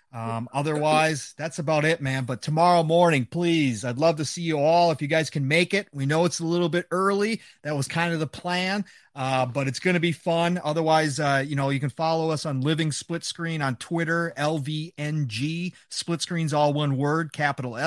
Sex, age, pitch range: male, 30-49, 130-160 Hz